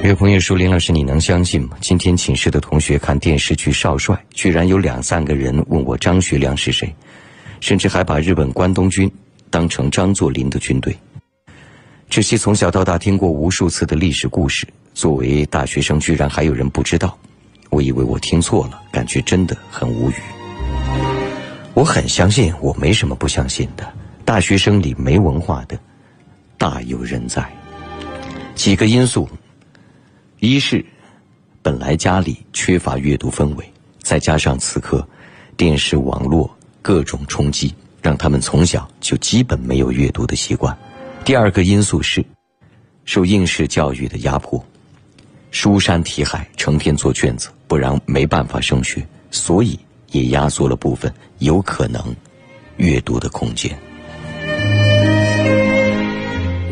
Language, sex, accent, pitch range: Chinese, male, native, 70-95 Hz